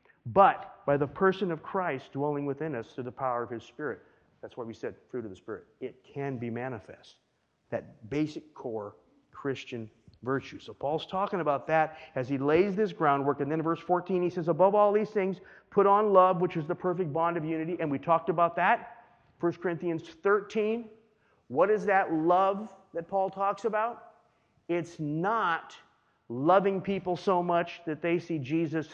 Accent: American